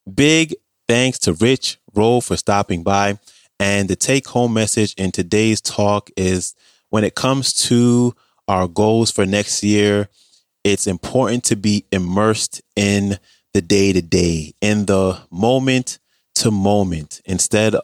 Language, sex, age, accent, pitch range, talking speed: English, male, 20-39, American, 95-110 Hz, 125 wpm